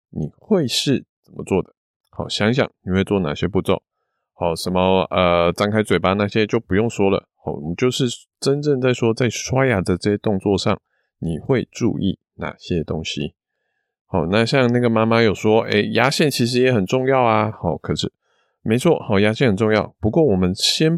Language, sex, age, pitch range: Chinese, male, 20-39, 90-120 Hz